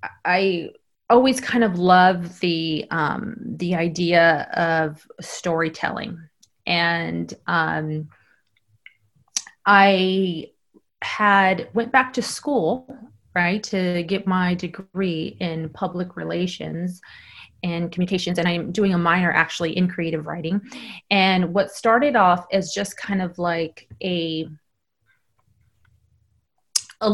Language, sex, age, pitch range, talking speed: English, female, 30-49, 170-205 Hz, 110 wpm